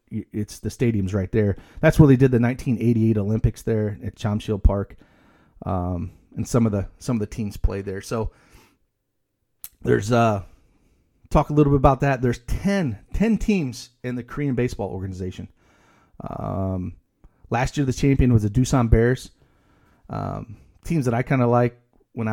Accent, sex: American, male